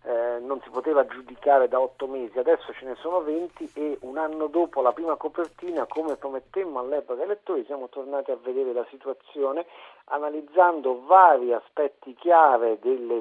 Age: 50-69